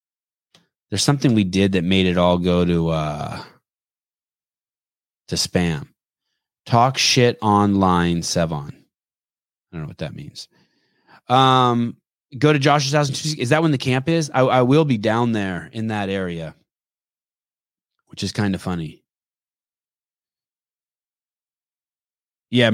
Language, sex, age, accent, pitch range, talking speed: English, male, 20-39, American, 85-125 Hz, 130 wpm